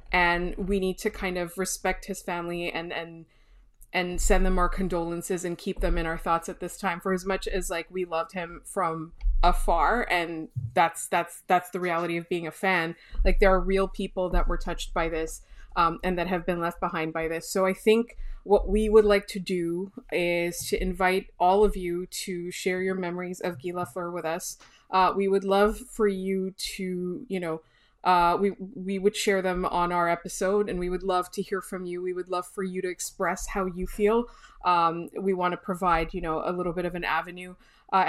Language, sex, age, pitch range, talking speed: English, female, 20-39, 175-195 Hz, 215 wpm